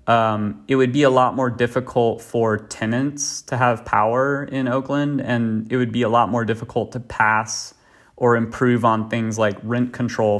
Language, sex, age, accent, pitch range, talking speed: English, male, 30-49, American, 110-125 Hz, 185 wpm